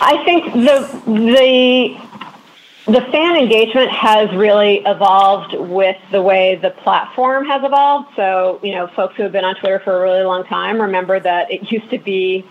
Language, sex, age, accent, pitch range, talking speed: English, female, 30-49, American, 185-220 Hz, 175 wpm